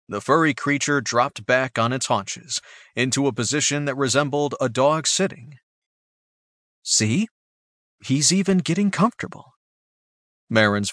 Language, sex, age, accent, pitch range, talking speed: English, male, 40-59, American, 110-165 Hz, 120 wpm